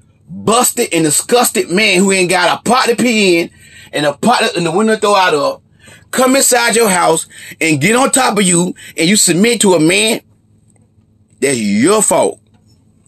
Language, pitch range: English, 150-235 Hz